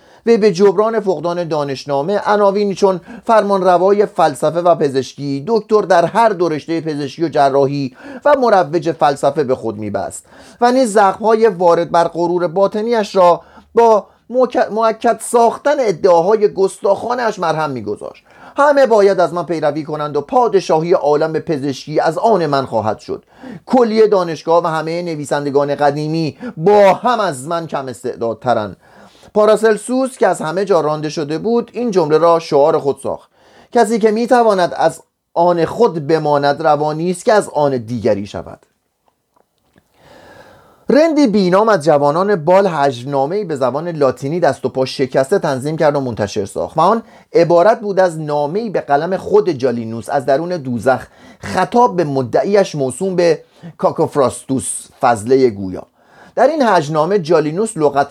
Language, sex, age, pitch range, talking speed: Persian, male, 30-49, 145-210 Hz, 145 wpm